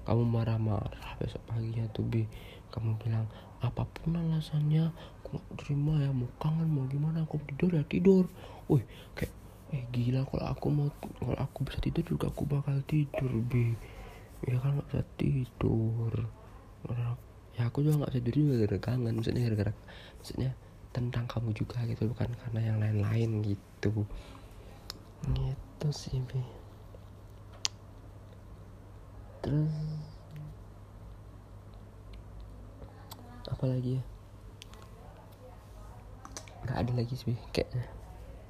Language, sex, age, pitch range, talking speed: Indonesian, male, 20-39, 100-125 Hz, 120 wpm